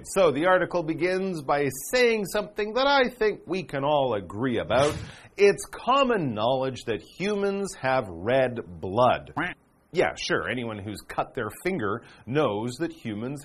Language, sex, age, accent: Chinese, male, 40-59, American